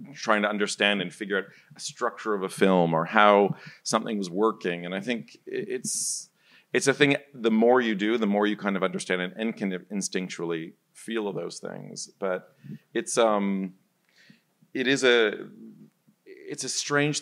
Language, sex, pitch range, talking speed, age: English, male, 95-120 Hz, 175 wpm, 40-59